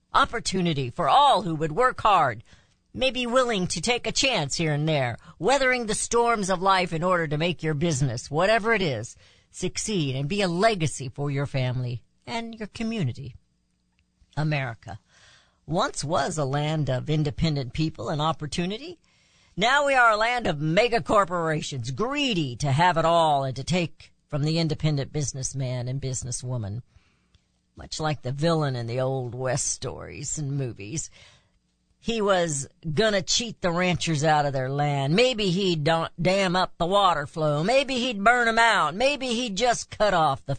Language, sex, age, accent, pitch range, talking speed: English, female, 50-69, American, 140-210 Hz, 165 wpm